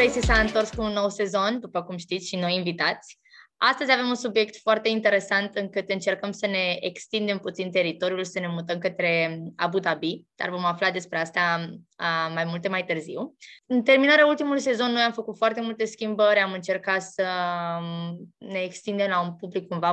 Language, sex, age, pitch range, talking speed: Romanian, female, 20-39, 175-220 Hz, 185 wpm